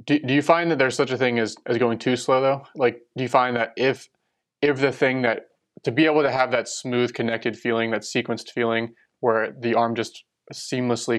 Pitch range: 110-125 Hz